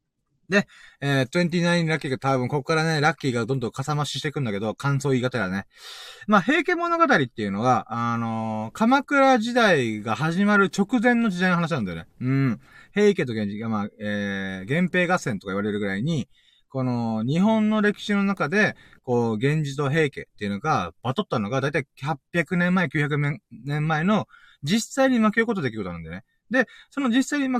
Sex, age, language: male, 20-39, Japanese